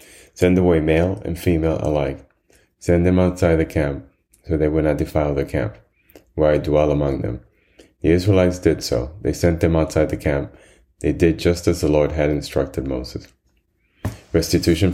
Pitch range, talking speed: 75-85 Hz, 175 wpm